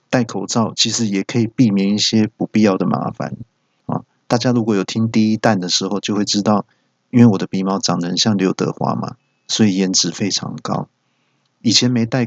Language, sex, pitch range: Chinese, male, 105-145 Hz